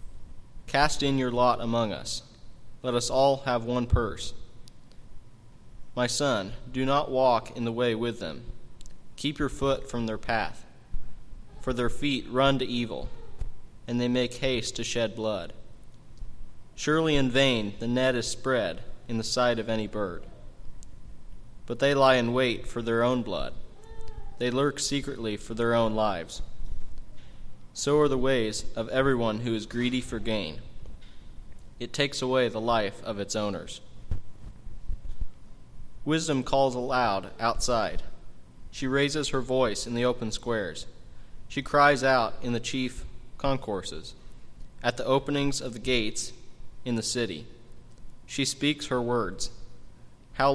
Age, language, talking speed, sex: 20-39, English, 145 wpm, male